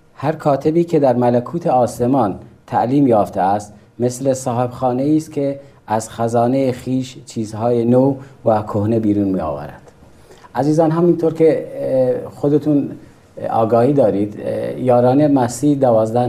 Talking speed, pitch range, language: 120 wpm, 100-135 Hz, Persian